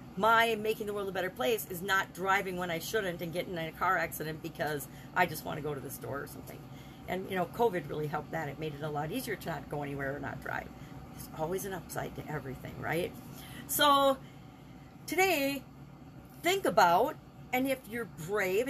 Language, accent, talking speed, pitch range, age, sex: English, American, 210 wpm, 160-225 Hz, 40-59, female